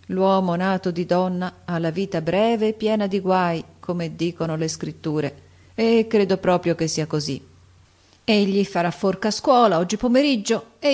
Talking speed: 165 wpm